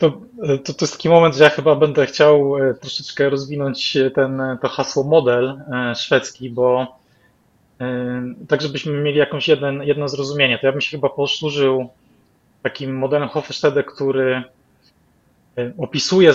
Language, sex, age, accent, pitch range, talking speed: Polish, male, 20-39, native, 130-145 Hz, 135 wpm